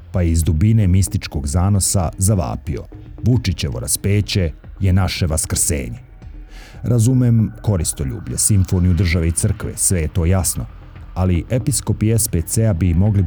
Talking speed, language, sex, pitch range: 120 wpm, Croatian, male, 85-105 Hz